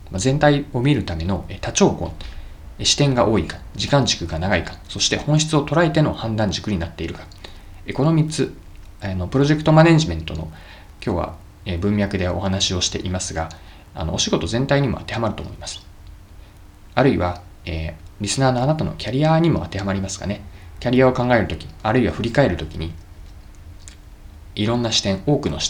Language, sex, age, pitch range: Japanese, male, 20-39, 85-115 Hz